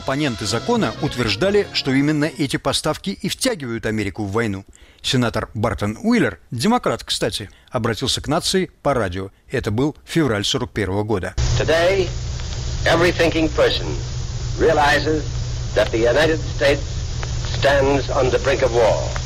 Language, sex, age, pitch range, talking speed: Russian, male, 60-79, 120-185 Hz, 85 wpm